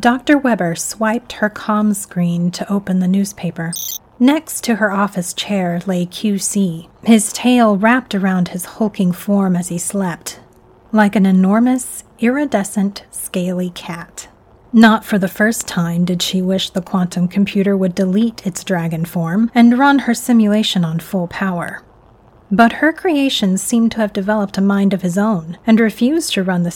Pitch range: 175-220 Hz